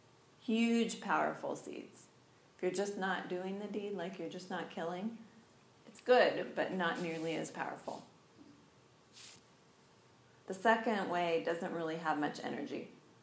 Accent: American